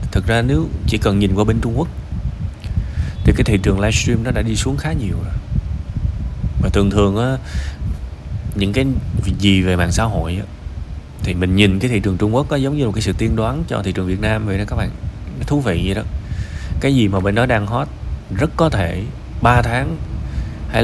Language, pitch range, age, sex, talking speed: Vietnamese, 95-120 Hz, 20-39, male, 220 wpm